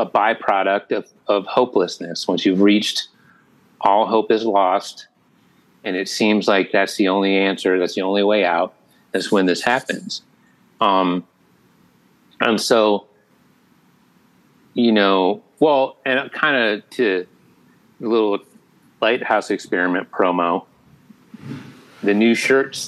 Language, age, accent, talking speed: English, 30-49, American, 125 wpm